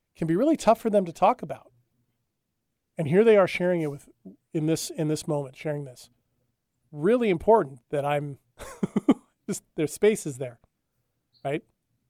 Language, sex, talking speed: English, male, 165 wpm